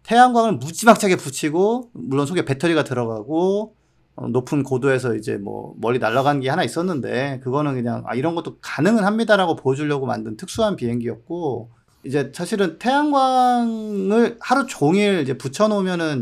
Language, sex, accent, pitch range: Korean, male, native, 125-175 Hz